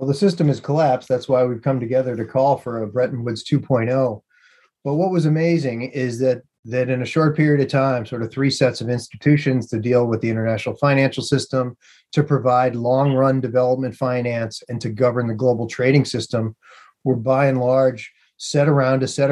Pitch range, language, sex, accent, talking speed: 120-140 Hz, English, male, American, 195 wpm